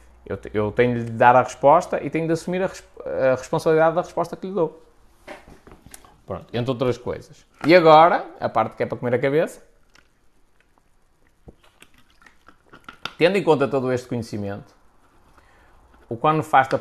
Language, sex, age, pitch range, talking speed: Portuguese, male, 20-39, 115-160 Hz, 145 wpm